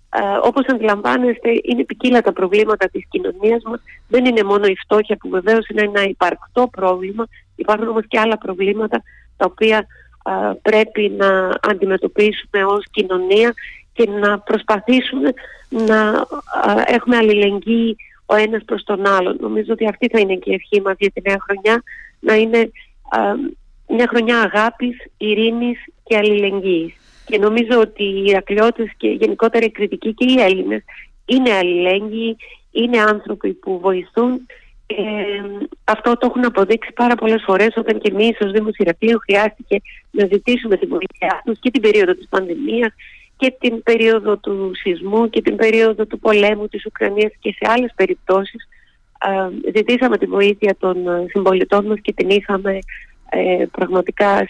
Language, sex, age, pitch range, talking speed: Greek, female, 40-59, 200-235 Hz, 155 wpm